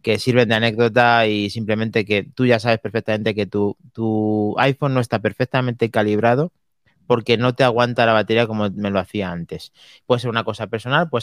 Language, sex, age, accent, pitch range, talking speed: Spanish, male, 30-49, Spanish, 105-130 Hz, 190 wpm